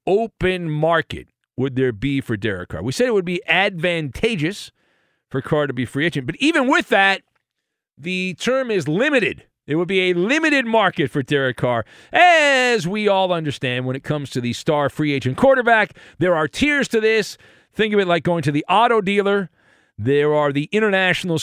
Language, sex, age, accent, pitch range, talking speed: English, male, 40-59, American, 145-185 Hz, 190 wpm